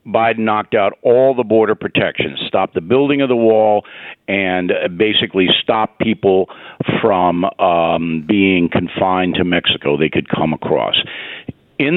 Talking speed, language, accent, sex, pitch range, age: 140 wpm, English, American, male, 90-130 Hz, 60-79